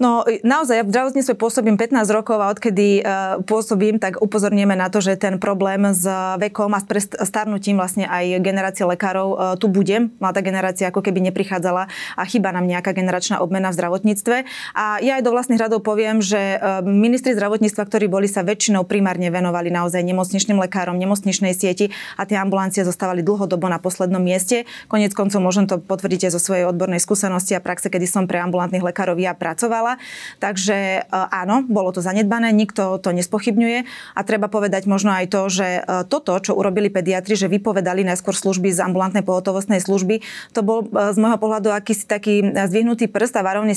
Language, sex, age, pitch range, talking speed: Slovak, female, 20-39, 185-215 Hz, 175 wpm